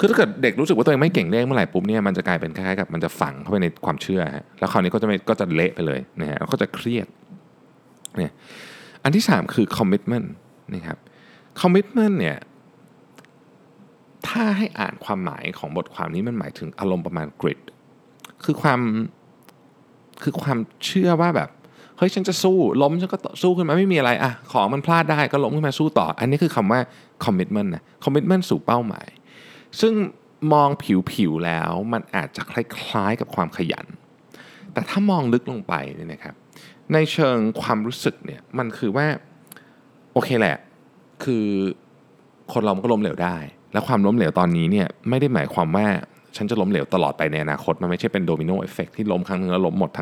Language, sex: Thai, male